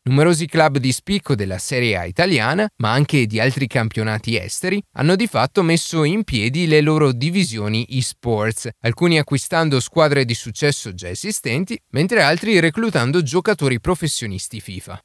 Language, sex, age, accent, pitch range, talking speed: Italian, male, 30-49, native, 115-170 Hz, 150 wpm